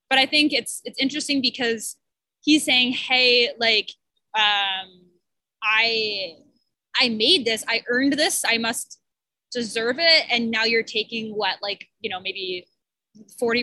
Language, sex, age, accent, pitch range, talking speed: English, female, 20-39, American, 205-260 Hz, 145 wpm